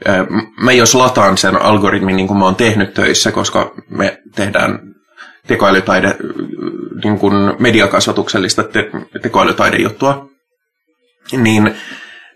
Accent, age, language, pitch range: native, 20-39, Finnish, 105-125 Hz